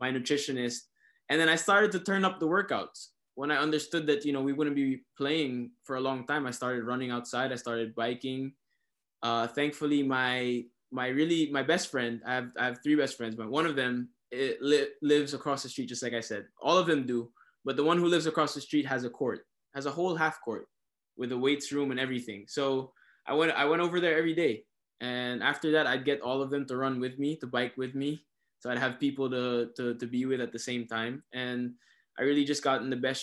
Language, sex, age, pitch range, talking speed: Filipino, male, 20-39, 120-140 Hz, 240 wpm